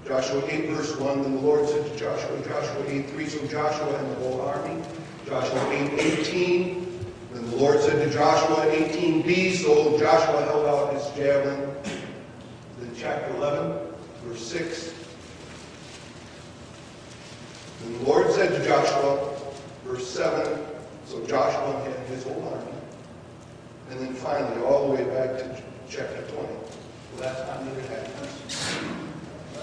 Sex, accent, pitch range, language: male, American, 130-155 Hz, English